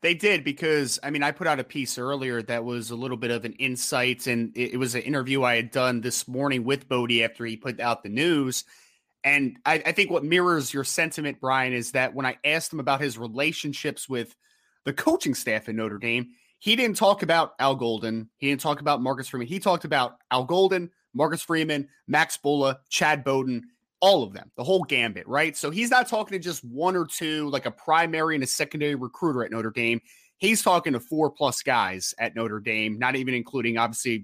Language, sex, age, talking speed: English, male, 30-49, 220 wpm